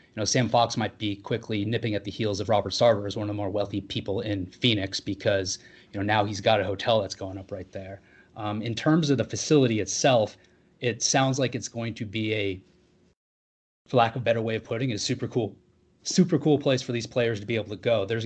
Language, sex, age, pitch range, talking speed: English, male, 30-49, 105-125 Hz, 245 wpm